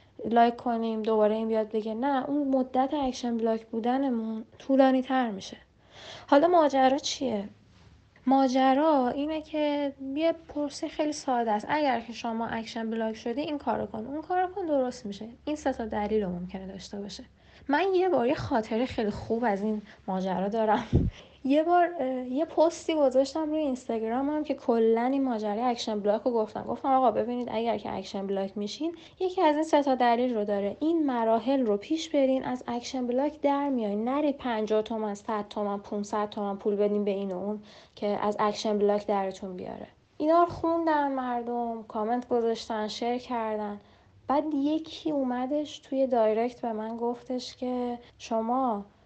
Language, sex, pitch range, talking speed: Persian, female, 220-280 Hz, 160 wpm